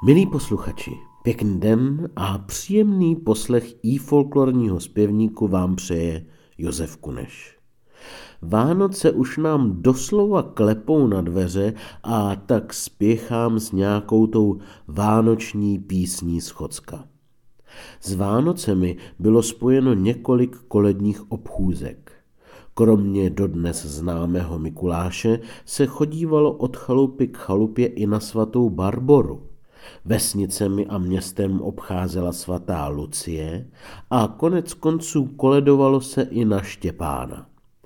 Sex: male